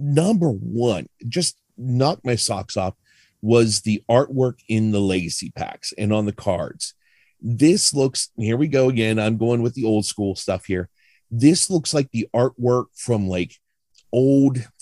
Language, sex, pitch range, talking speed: English, male, 110-140 Hz, 160 wpm